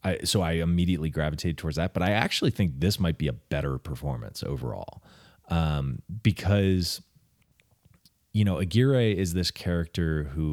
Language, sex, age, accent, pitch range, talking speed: English, male, 30-49, American, 75-105 Hz, 150 wpm